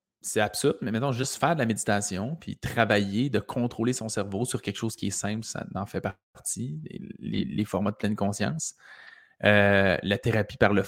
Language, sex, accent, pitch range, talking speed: French, male, Canadian, 105-130 Hz, 205 wpm